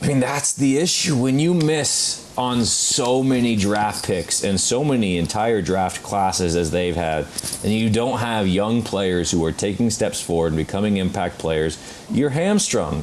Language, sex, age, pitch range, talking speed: English, male, 30-49, 100-130 Hz, 180 wpm